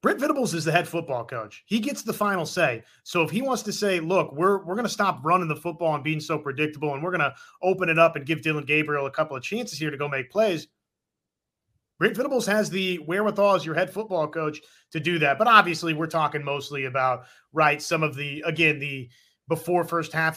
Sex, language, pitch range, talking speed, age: male, English, 150-185 Hz, 235 wpm, 30-49